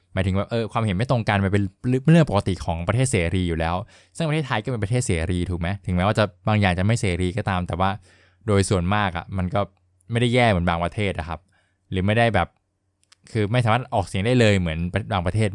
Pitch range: 90-110 Hz